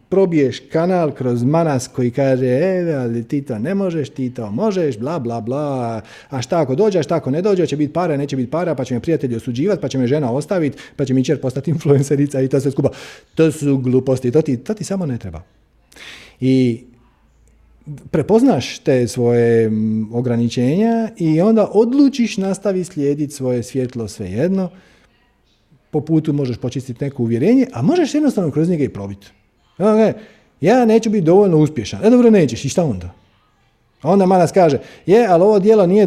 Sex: male